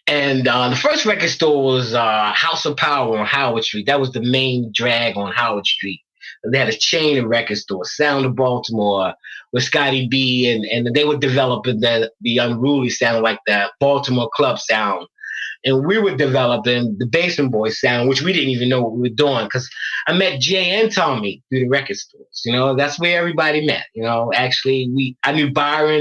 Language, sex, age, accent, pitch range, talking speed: English, male, 20-39, American, 120-155 Hz, 205 wpm